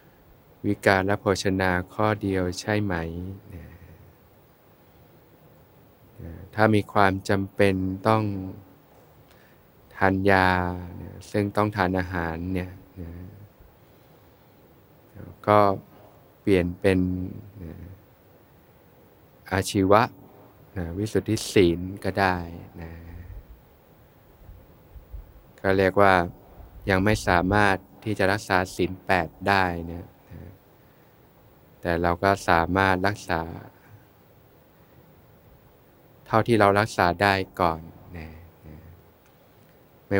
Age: 20-39